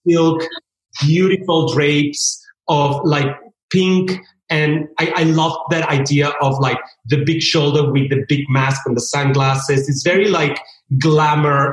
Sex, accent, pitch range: male, Mexican, 135-160 Hz